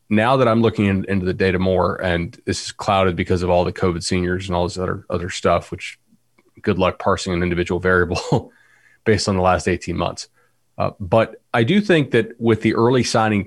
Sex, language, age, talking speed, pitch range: male, English, 30-49, 215 wpm, 95-115 Hz